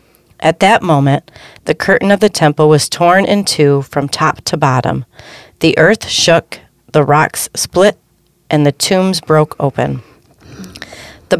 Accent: American